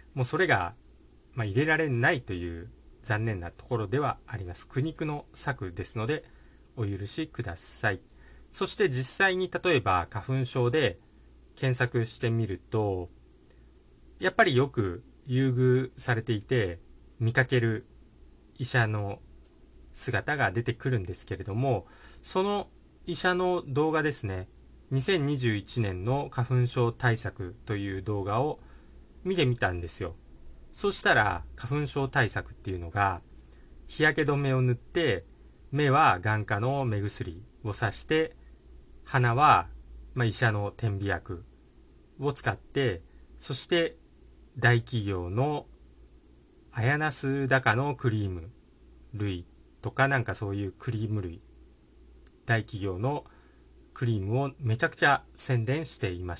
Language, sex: Japanese, male